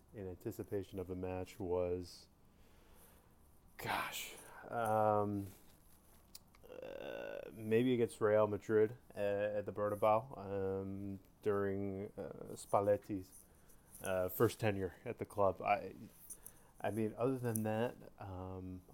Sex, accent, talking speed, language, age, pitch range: male, American, 110 wpm, English, 30-49, 95-110 Hz